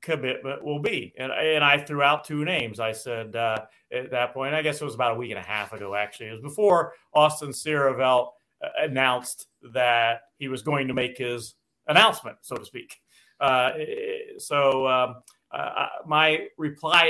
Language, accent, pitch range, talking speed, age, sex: English, American, 130-155 Hz, 185 wpm, 40-59, male